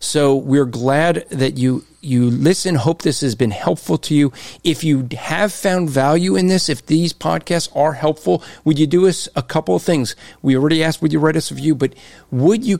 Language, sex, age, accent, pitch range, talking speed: English, male, 50-69, American, 130-165 Hz, 215 wpm